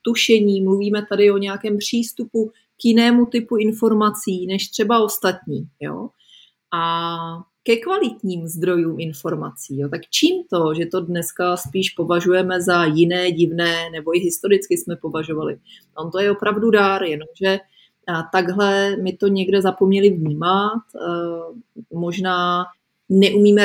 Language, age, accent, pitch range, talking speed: Czech, 30-49, native, 170-205 Hz, 125 wpm